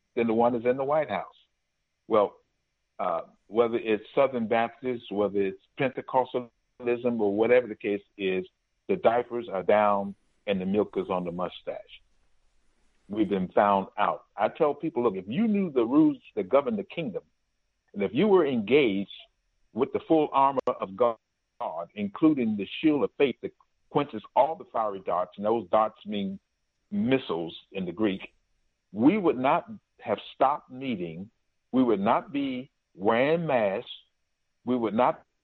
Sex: male